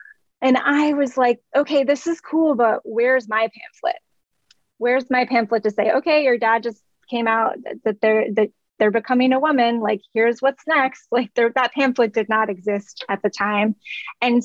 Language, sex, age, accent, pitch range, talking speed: English, female, 20-39, American, 215-250 Hz, 185 wpm